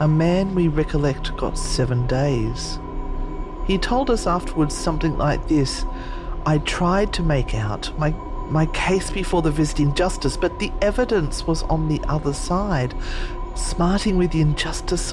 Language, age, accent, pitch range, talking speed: English, 40-59, Australian, 125-155 Hz, 150 wpm